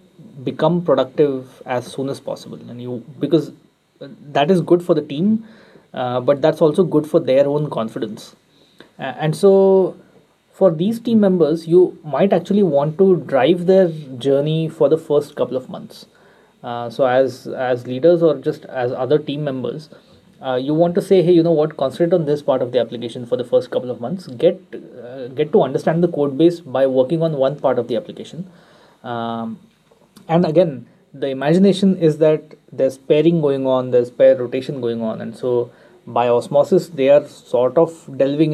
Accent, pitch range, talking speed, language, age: Indian, 130-175 Hz, 185 wpm, English, 20-39